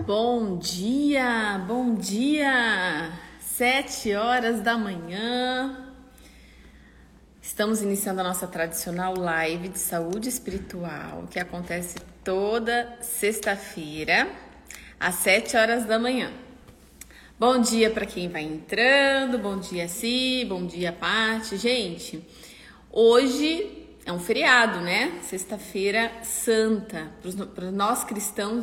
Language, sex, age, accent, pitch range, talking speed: Portuguese, female, 30-49, Brazilian, 190-245 Hz, 105 wpm